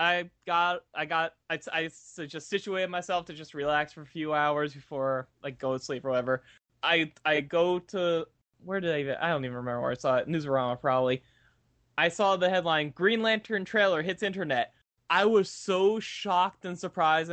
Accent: American